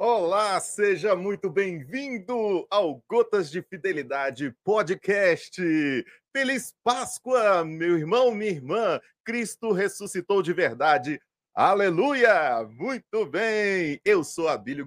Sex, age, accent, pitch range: male, 40-59, Brazilian, 150-200 Hz